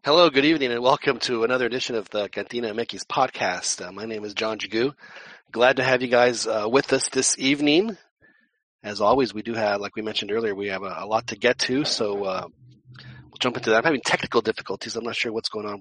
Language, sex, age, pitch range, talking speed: English, male, 30-49, 105-125 Hz, 240 wpm